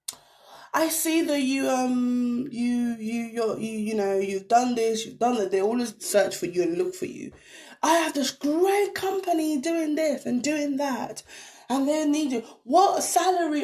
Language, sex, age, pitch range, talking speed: English, female, 20-39, 195-305 Hz, 185 wpm